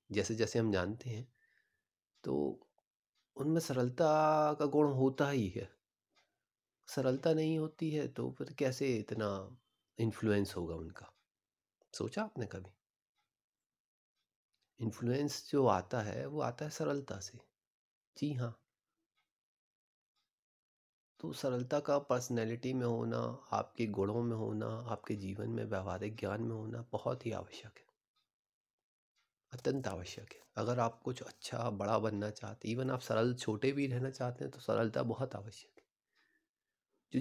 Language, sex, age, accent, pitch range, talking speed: Hindi, male, 30-49, native, 105-130 Hz, 135 wpm